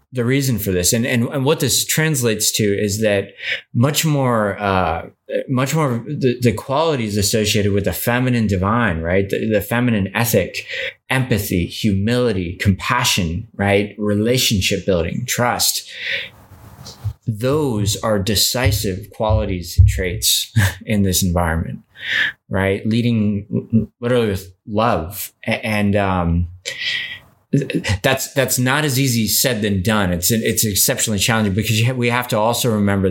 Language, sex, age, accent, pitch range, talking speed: English, male, 20-39, American, 95-115 Hz, 135 wpm